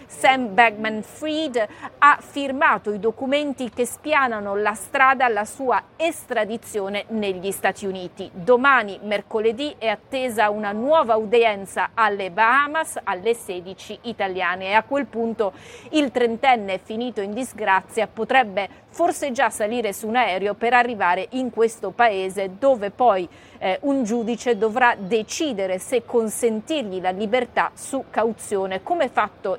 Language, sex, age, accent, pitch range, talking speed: Italian, female, 40-59, native, 200-250 Hz, 130 wpm